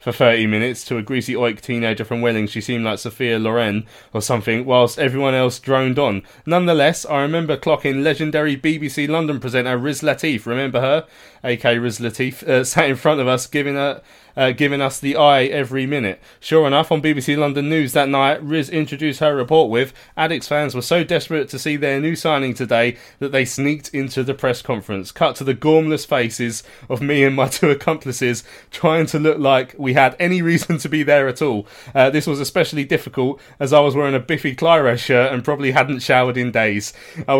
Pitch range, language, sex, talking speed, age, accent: 120-145 Hz, English, male, 200 wpm, 20-39, British